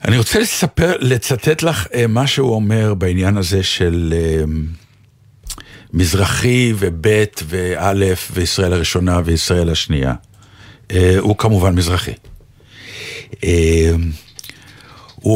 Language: Hebrew